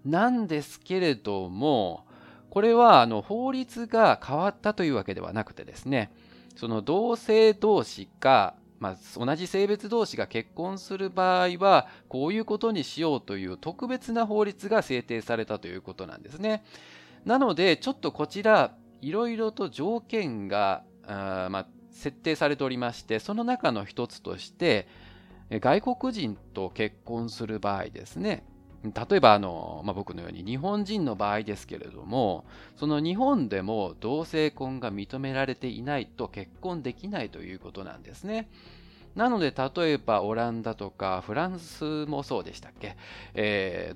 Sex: male